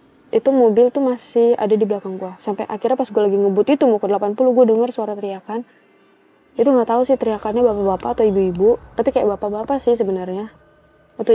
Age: 20-39